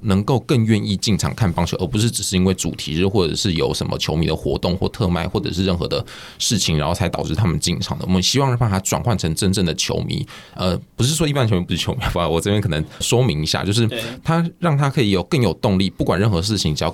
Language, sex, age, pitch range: Chinese, male, 20-39, 85-110 Hz